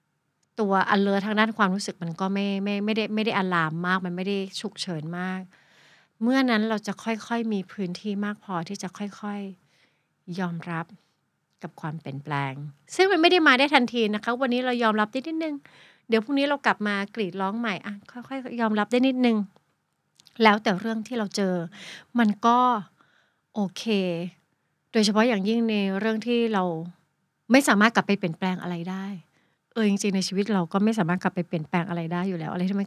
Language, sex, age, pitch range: Thai, female, 60-79, 175-220 Hz